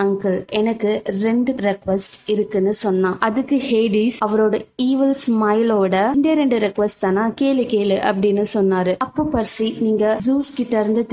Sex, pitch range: female, 205-240 Hz